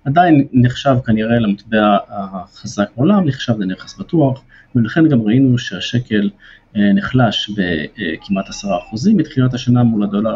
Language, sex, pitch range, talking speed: Hebrew, male, 110-135 Hz, 120 wpm